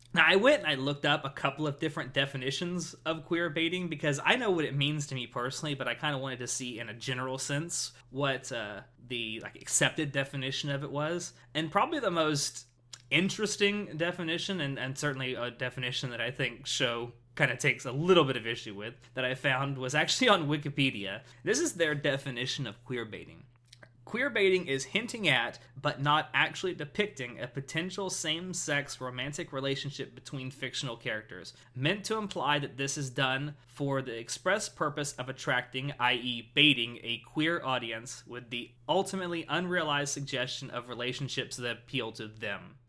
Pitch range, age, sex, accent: 125-155 Hz, 20-39, male, American